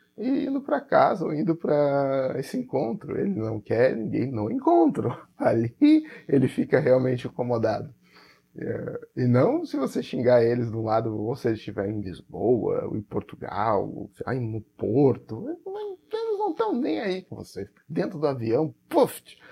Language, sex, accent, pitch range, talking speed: Portuguese, male, Brazilian, 115-170 Hz, 155 wpm